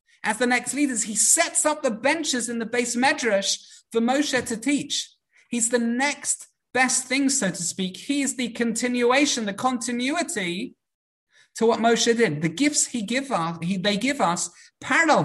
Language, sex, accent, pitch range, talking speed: English, male, British, 170-245 Hz, 175 wpm